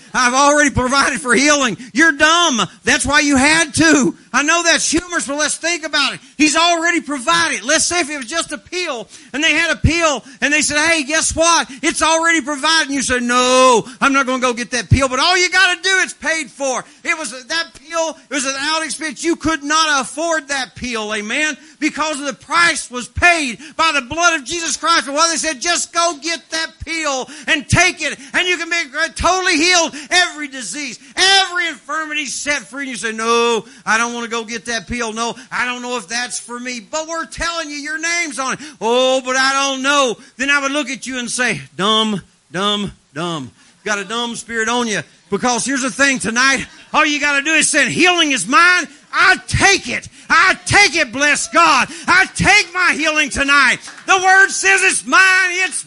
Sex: male